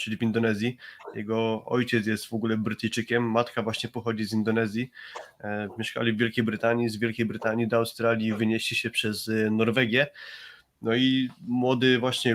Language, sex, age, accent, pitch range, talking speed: Polish, male, 20-39, native, 110-120 Hz, 150 wpm